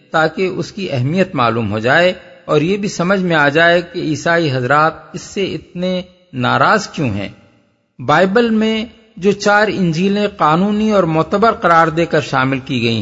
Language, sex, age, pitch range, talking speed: Urdu, male, 50-69, 150-195 Hz, 170 wpm